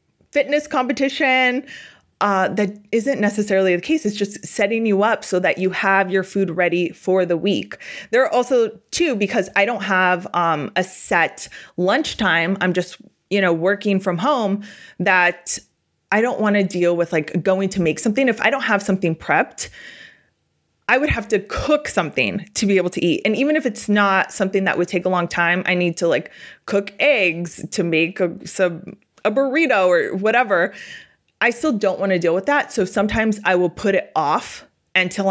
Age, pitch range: 20-39, 175-230 Hz